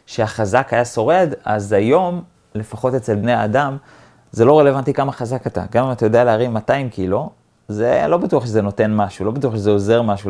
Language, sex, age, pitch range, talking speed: Hebrew, male, 30-49, 105-130 Hz, 190 wpm